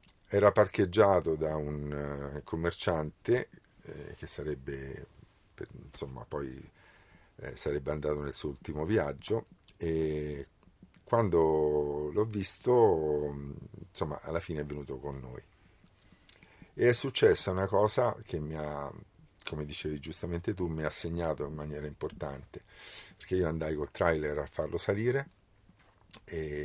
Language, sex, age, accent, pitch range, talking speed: Italian, male, 50-69, native, 75-95 Hz, 120 wpm